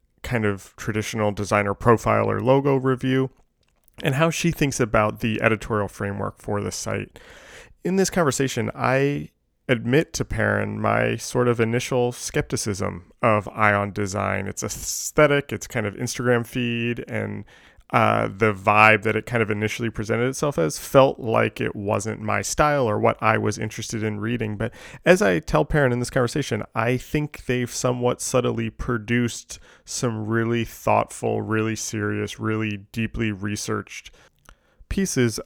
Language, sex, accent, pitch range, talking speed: English, male, American, 105-125 Hz, 150 wpm